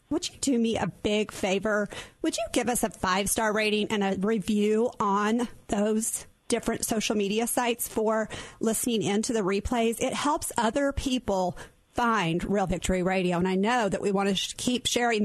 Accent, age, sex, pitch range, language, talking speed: American, 40-59, female, 200-245 Hz, English, 185 wpm